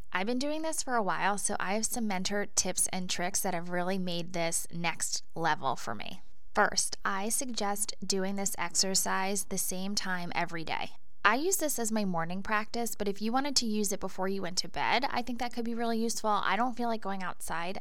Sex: female